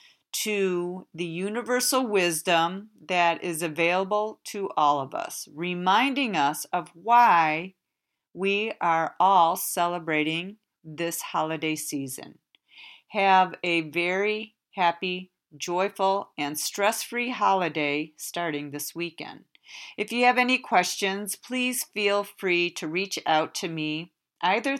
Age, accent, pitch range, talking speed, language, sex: 50-69, American, 165-220 Hz, 115 wpm, English, female